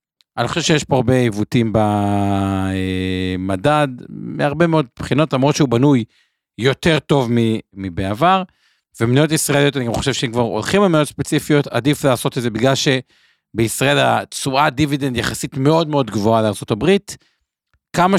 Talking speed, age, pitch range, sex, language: 130 wpm, 50-69, 105-145 Hz, male, Hebrew